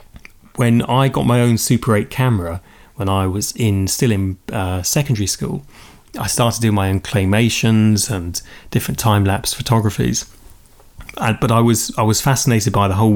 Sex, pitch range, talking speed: male, 100-125 Hz, 175 wpm